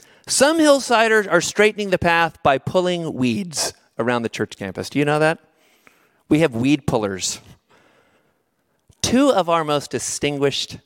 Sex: male